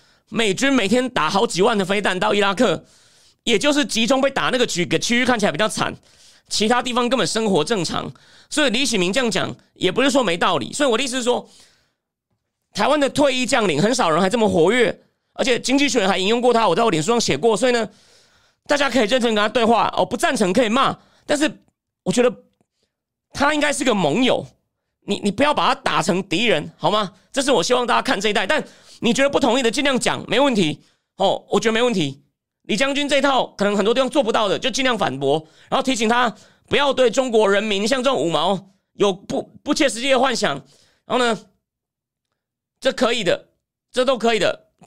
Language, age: Chinese, 30-49